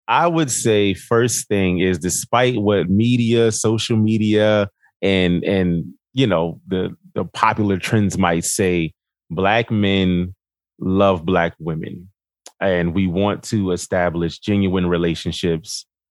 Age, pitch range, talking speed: 30-49, 90-115 Hz, 125 wpm